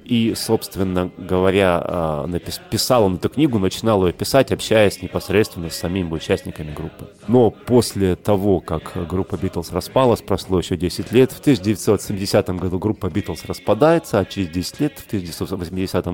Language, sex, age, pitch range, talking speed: Russian, male, 30-49, 85-105 Hz, 145 wpm